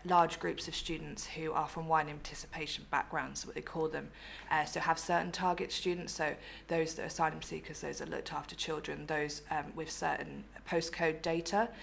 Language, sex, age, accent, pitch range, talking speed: English, female, 20-39, British, 155-175 Hz, 195 wpm